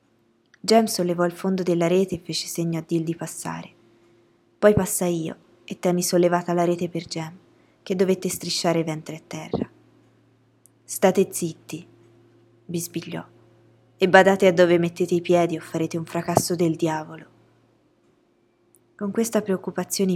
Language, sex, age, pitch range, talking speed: Italian, female, 20-39, 160-190 Hz, 145 wpm